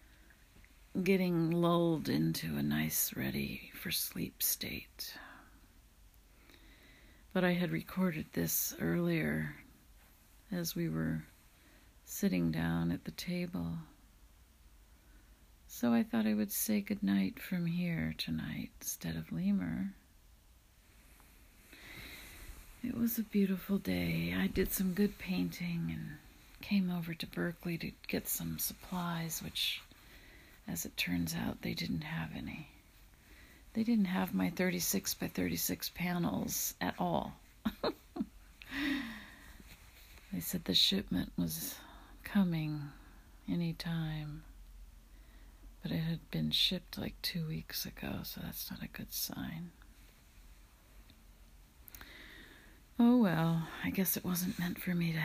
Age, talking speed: 50-69, 115 wpm